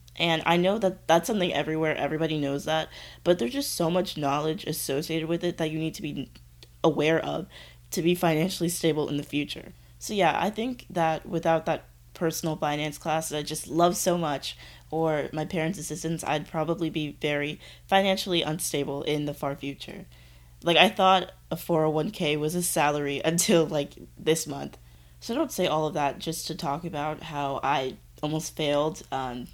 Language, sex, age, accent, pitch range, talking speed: English, female, 20-39, American, 145-165 Hz, 185 wpm